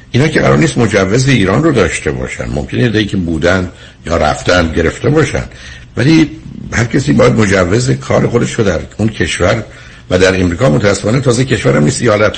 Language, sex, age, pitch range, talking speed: Persian, male, 60-79, 85-110 Hz, 165 wpm